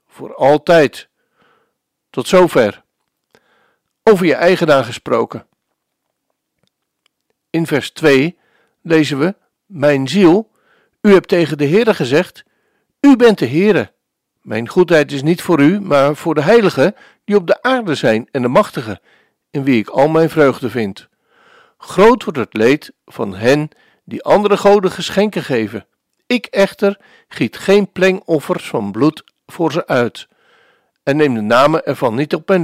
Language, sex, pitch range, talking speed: Dutch, male, 145-200 Hz, 145 wpm